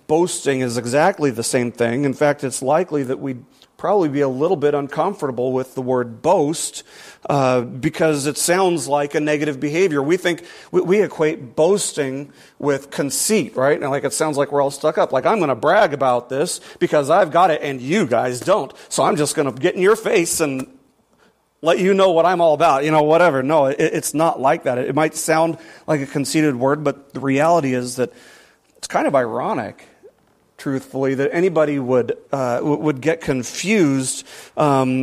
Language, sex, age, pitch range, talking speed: English, male, 40-59, 135-160 Hz, 195 wpm